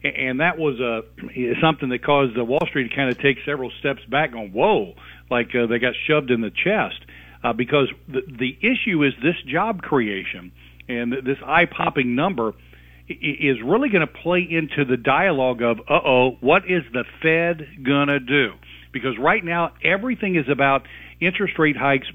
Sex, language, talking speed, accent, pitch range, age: male, English, 180 wpm, American, 120-165 Hz, 50-69